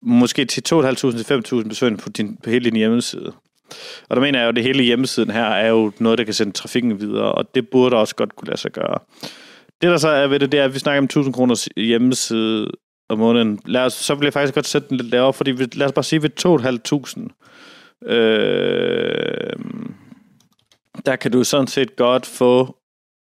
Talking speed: 200 wpm